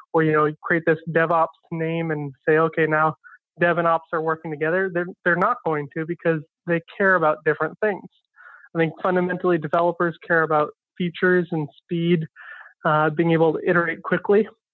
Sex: male